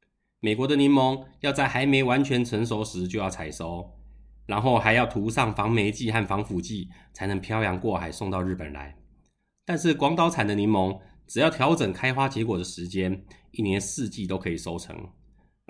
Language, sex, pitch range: Chinese, male, 95-125 Hz